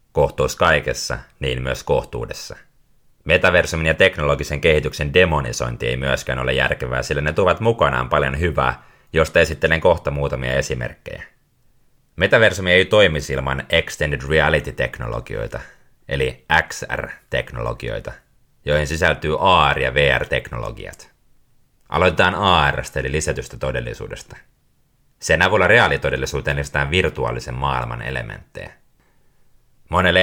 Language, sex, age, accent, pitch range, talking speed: Finnish, male, 30-49, native, 65-75 Hz, 100 wpm